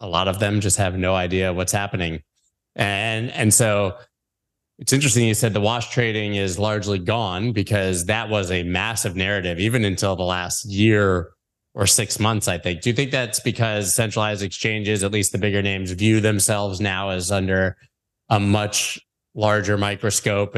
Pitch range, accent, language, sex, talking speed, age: 95-115 Hz, American, English, male, 175 wpm, 20-39